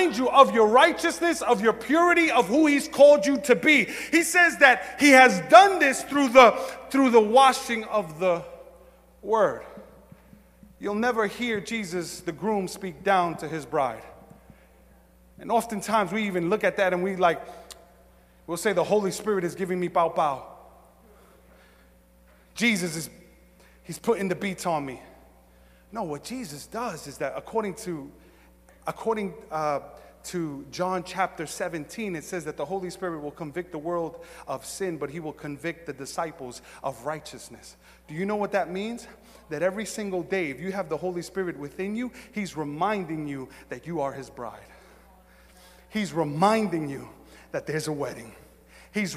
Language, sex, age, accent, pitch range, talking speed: English, male, 30-49, American, 150-220 Hz, 165 wpm